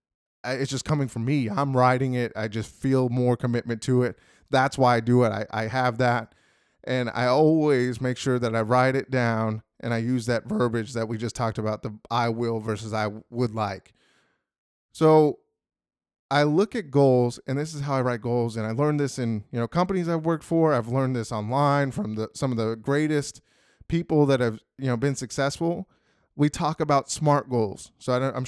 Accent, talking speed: American, 205 wpm